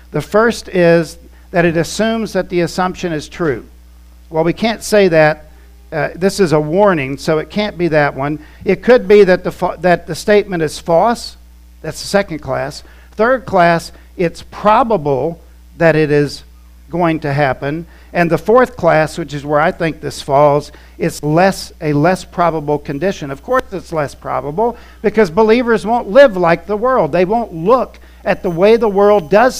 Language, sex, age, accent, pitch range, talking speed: English, male, 50-69, American, 150-195 Hz, 180 wpm